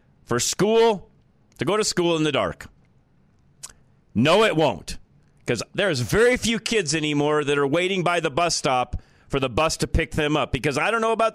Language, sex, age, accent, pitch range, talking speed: English, male, 40-59, American, 140-205 Hz, 195 wpm